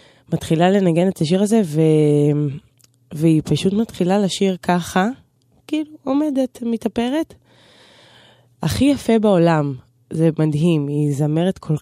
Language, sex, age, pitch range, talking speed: Hebrew, female, 20-39, 145-180 Hz, 110 wpm